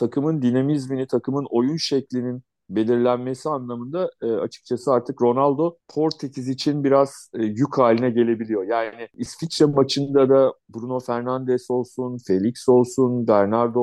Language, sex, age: Turkish, male, 50-69